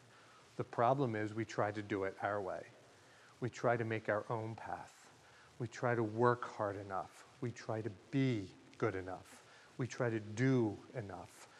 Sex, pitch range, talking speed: male, 110-130 Hz, 175 wpm